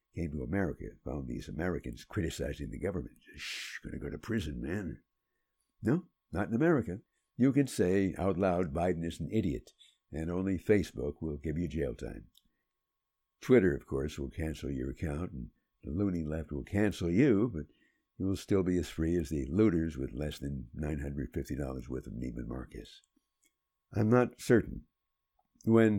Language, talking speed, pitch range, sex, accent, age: English, 170 wpm, 70-100 Hz, male, American, 60-79